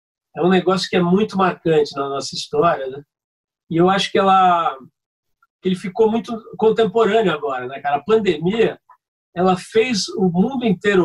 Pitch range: 155-215 Hz